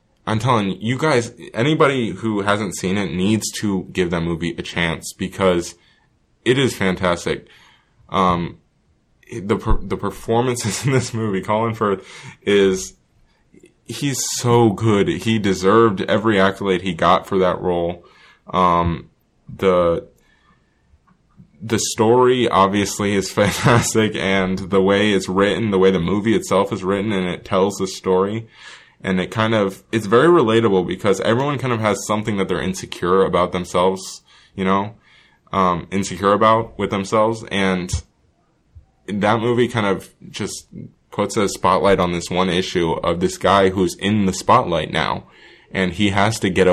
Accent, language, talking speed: American, English, 150 wpm